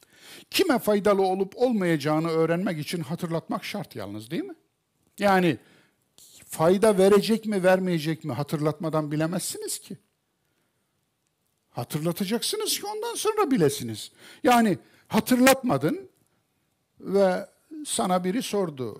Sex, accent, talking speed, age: male, native, 100 wpm, 60-79